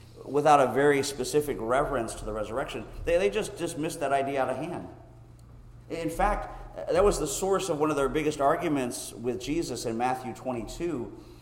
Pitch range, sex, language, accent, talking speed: 115-145 Hz, male, English, American, 180 wpm